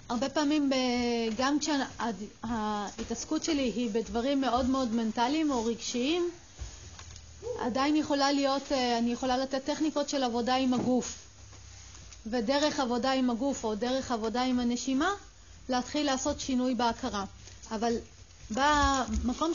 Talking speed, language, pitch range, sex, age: 115 wpm, Hebrew, 235-280 Hz, female, 30-49